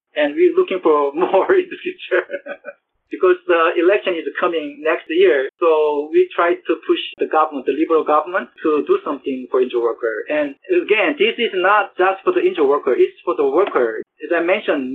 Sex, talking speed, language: male, 195 wpm, English